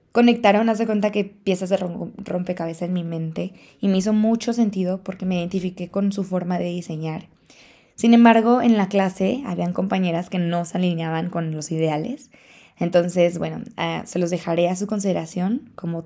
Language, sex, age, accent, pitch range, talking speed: Spanish, female, 20-39, Mexican, 170-205 Hz, 175 wpm